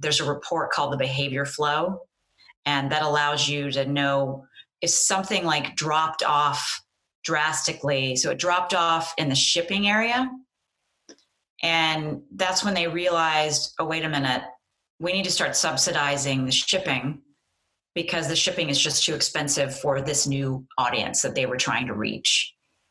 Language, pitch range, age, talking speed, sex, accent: English, 135-160 Hz, 30-49, 155 wpm, female, American